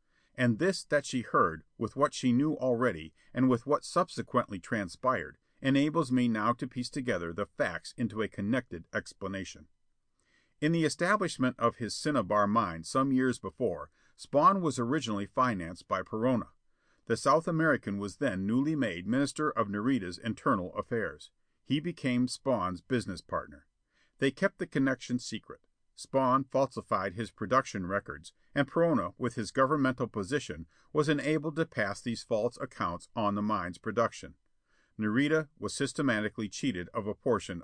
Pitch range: 100-140 Hz